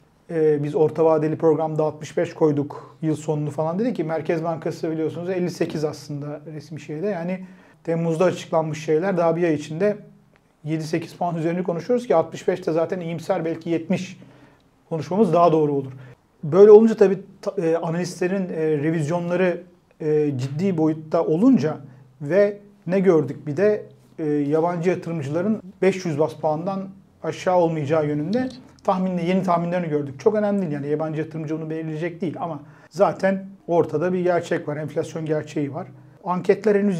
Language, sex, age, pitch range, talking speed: Turkish, male, 40-59, 155-185 Hz, 145 wpm